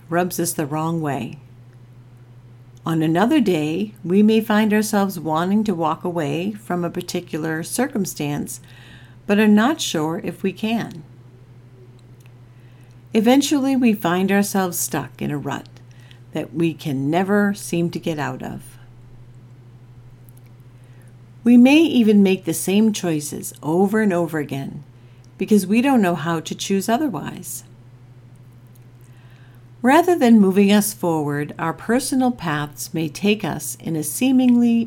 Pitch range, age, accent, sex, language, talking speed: 125-200 Hz, 50-69, American, female, English, 135 wpm